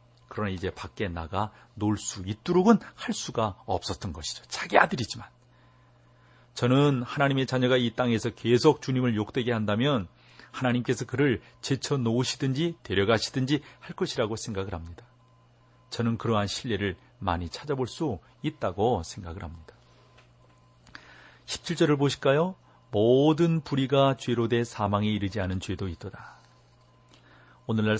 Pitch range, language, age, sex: 95-125 Hz, Korean, 40-59, male